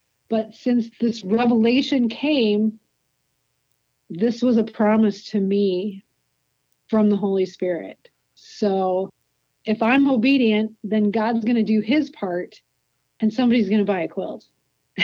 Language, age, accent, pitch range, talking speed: English, 50-69, American, 205-250 Hz, 130 wpm